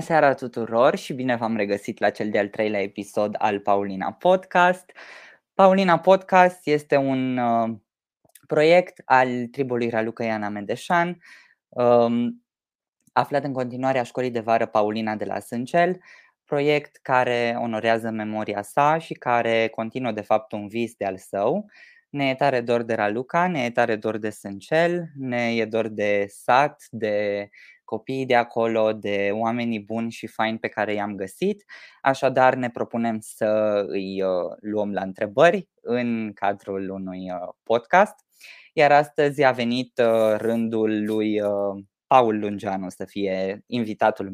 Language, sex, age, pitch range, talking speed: Romanian, female, 20-39, 110-140 Hz, 140 wpm